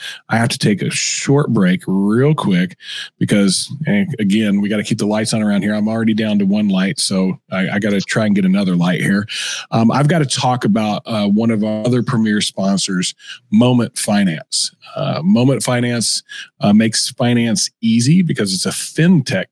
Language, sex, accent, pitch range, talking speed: English, male, American, 115-155 Hz, 190 wpm